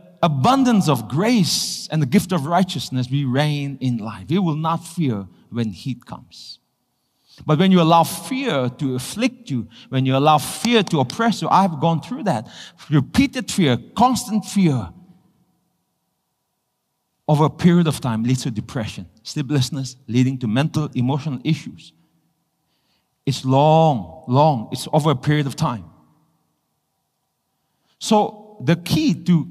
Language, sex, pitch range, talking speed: English, male, 145-210 Hz, 140 wpm